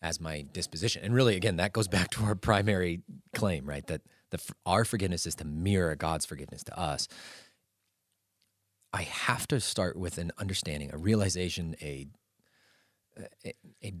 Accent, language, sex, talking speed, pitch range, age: American, English, male, 160 wpm, 100-130 Hz, 30-49